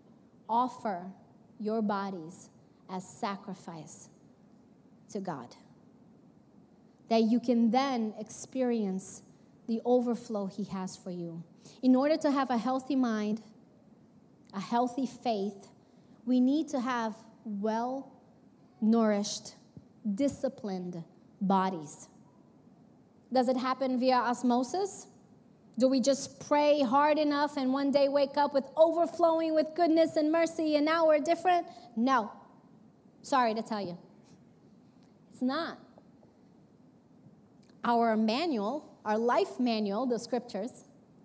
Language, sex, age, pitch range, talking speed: English, female, 20-39, 215-275 Hz, 110 wpm